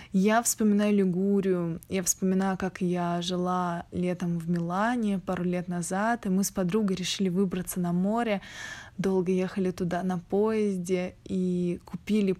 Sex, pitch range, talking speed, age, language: female, 185-215 Hz, 140 wpm, 20-39, Russian